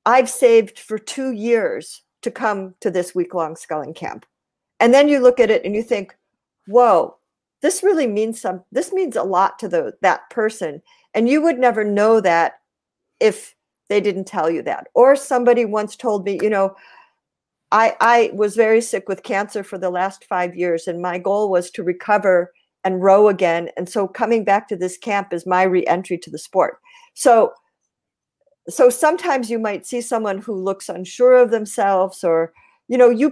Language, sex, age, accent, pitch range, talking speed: English, female, 50-69, American, 185-250 Hz, 185 wpm